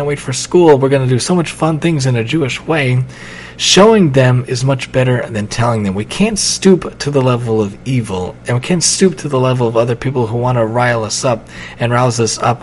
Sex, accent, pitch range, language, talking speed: male, American, 110-135 Hz, English, 245 wpm